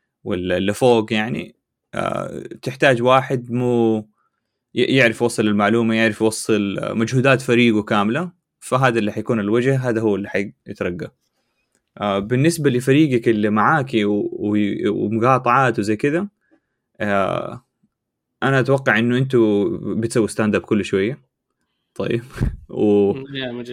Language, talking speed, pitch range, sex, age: Arabic, 100 wpm, 105-130 Hz, male, 20-39